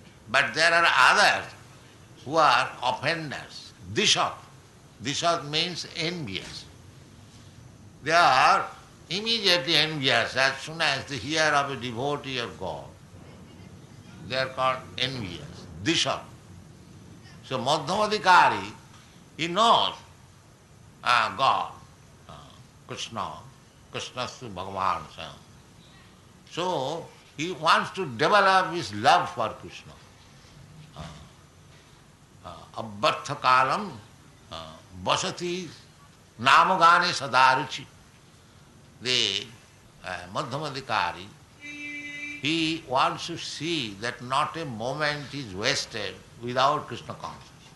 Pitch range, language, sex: 120-160 Hz, English, male